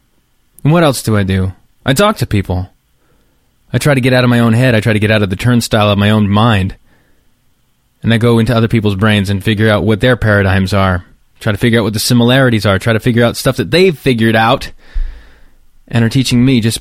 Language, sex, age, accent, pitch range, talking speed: English, male, 20-39, American, 105-130 Hz, 240 wpm